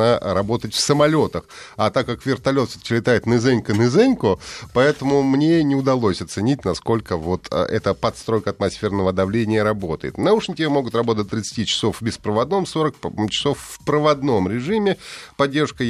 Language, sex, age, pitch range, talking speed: Russian, male, 30-49, 110-150 Hz, 130 wpm